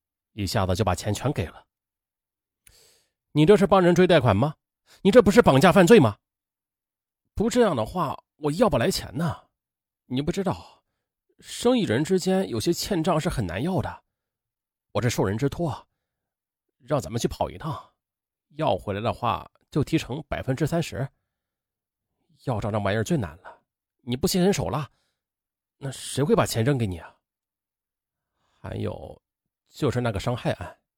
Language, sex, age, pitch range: Chinese, male, 30-49, 100-165 Hz